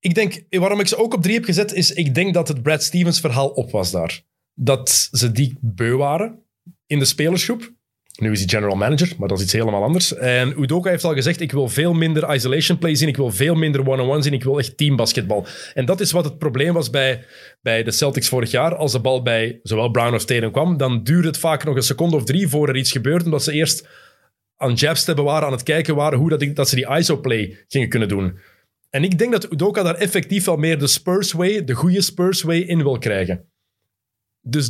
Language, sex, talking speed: Dutch, male, 240 wpm